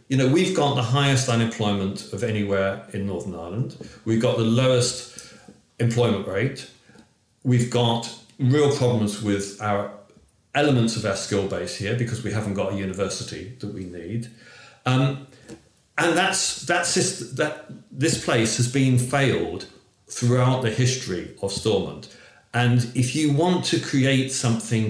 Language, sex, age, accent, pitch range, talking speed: English, male, 50-69, British, 110-130 Hz, 150 wpm